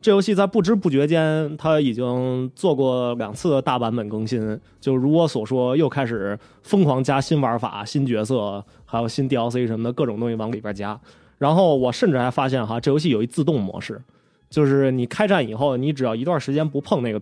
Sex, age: male, 20-39